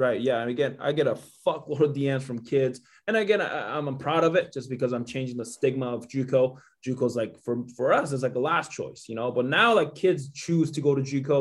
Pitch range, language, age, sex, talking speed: 125-155 Hz, English, 20-39, male, 260 wpm